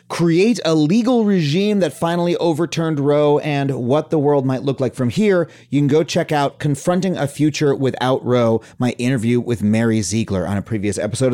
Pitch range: 130-170 Hz